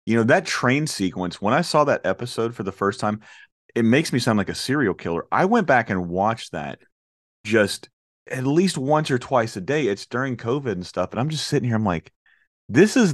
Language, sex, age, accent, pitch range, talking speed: English, male, 30-49, American, 90-120 Hz, 230 wpm